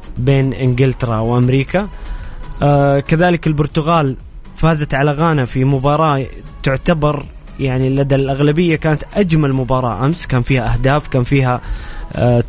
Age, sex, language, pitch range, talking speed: 20-39, male, Arabic, 125-145 Hz, 120 wpm